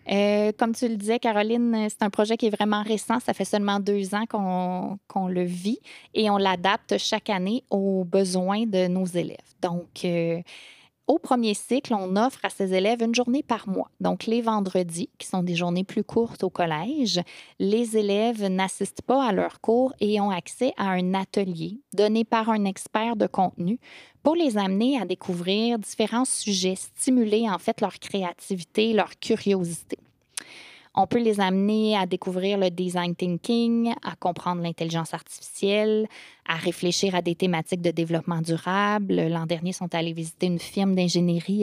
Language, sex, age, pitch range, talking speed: French, female, 20-39, 180-220 Hz, 175 wpm